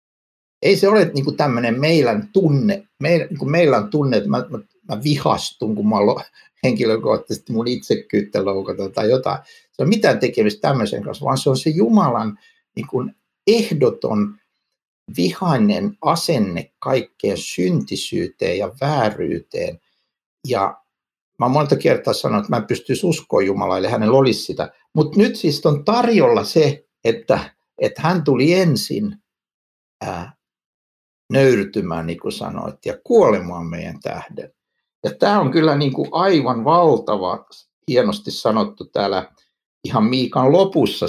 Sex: male